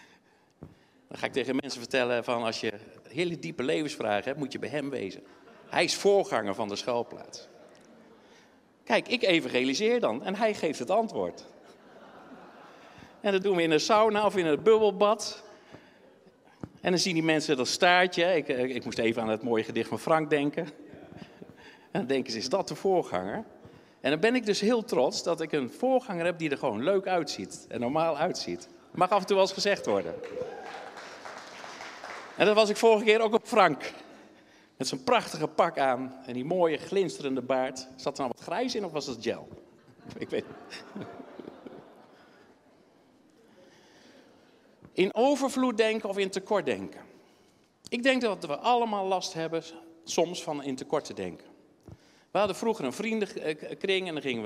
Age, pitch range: 50-69, 135-205 Hz